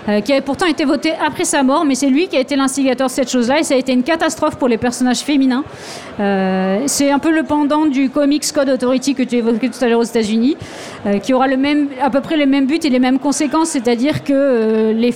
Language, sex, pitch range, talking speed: French, female, 230-275 Hz, 275 wpm